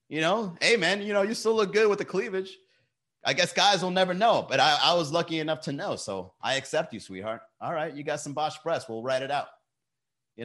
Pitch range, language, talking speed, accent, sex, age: 125-160 Hz, English, 255 wpm, American, male, 30-49